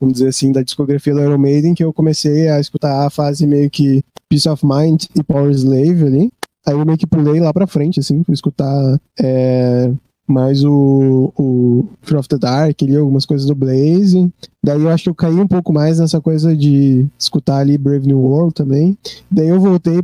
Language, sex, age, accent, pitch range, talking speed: Portuguese, male, 20-39, Brazilian, 140-160 Hz, 205 wpm